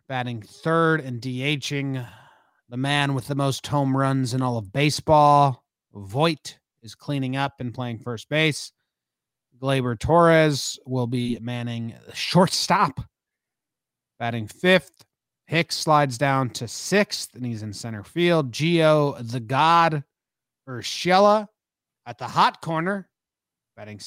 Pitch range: 125-160 Hz